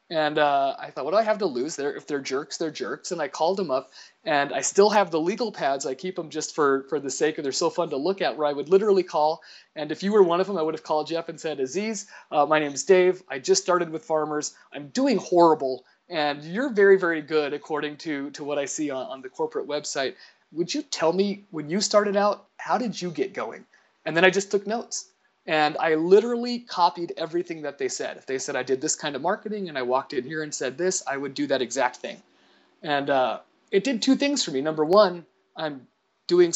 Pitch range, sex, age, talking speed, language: 145-200 Hz, male, 30-49, 255 wpm, English